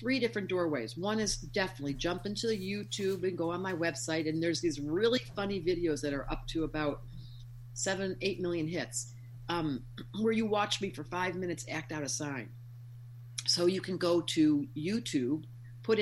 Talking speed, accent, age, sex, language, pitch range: 185 wpm, American, 50-69, female, English, 125-185 Hz